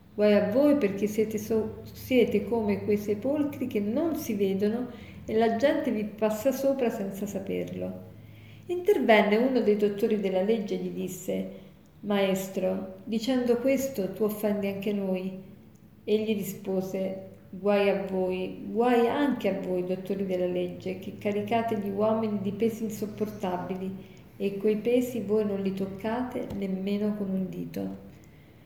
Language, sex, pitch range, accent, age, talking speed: Italian, female, 190-220 Hz, native, 50-69, 140 wpm